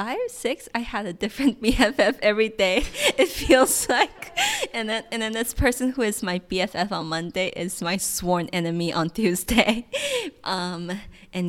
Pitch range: 170-220 Hz